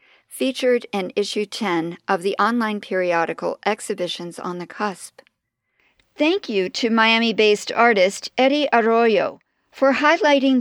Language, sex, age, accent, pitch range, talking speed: English, female, 50-69, American, 190-250 Hz, 120 wpm